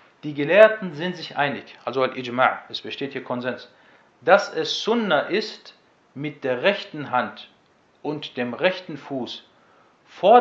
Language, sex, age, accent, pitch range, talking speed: German, male, 40-59, German, 130-175 Hz, 140 wpm